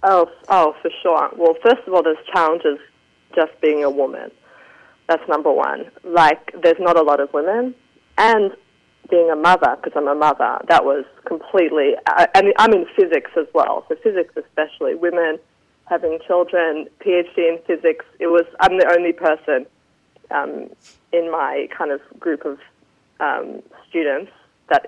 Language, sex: English, female